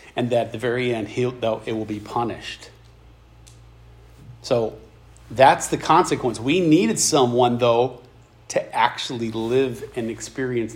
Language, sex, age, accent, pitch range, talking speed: English, male, 40-59, American, 110-150 Hz, 130 wpm